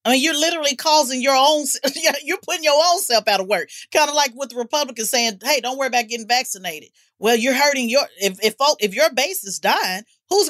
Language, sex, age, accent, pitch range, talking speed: English, female, 40-59, American, 195-280 Hz, 230 wpm